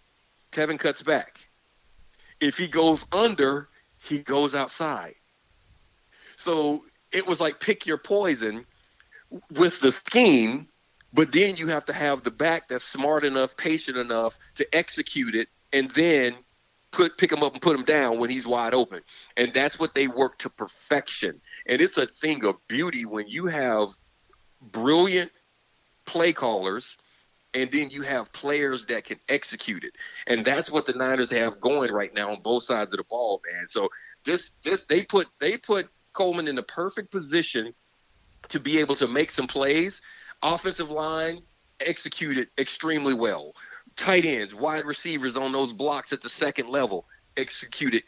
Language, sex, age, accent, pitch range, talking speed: English, male, 50-69, American, 130-165 Hz, 160 wpm